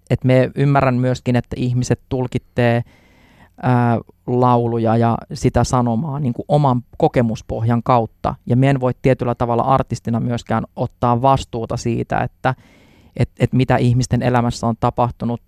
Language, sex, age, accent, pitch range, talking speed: Finnish, male, 20-39, native, 115-130 Hz, 130 wpm